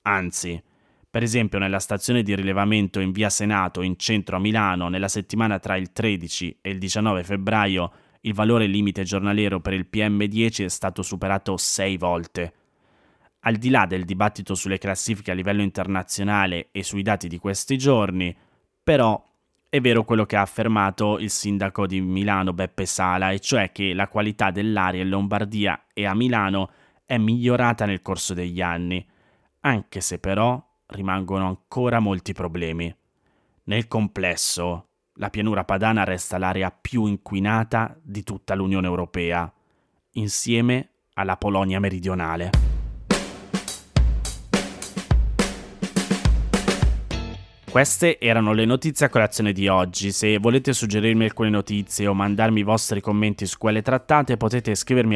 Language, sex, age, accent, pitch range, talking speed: Italian, male, 20-39, native, 95-110 Hz, 140 wpm